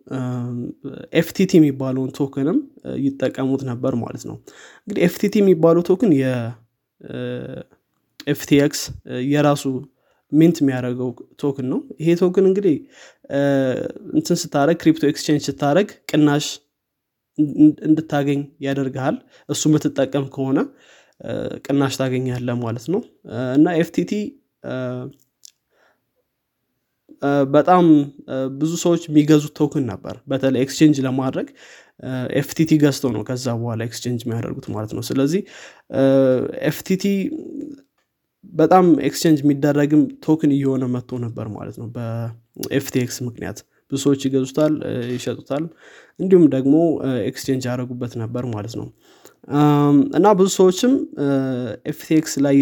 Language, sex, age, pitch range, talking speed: Amharic, male, 20-39, 130-155 Hz, 80 wpm